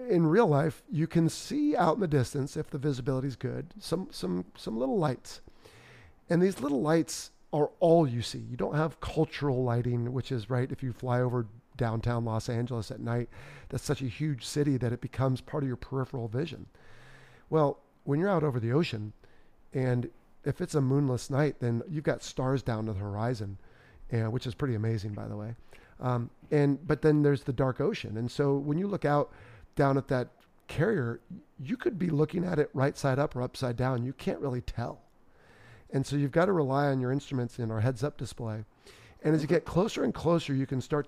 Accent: American